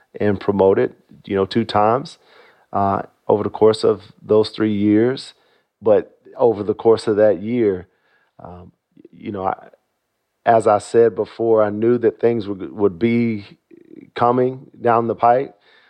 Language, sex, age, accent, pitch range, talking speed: English, male, 40-59, American, 100-120 Hz, 155 wpm